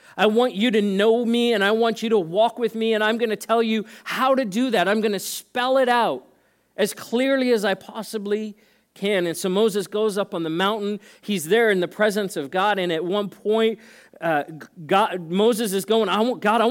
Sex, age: male, 40-59